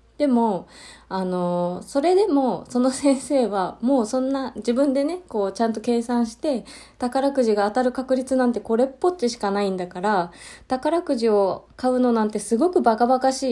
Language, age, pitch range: Japanese, 20-39, 175-240 Hz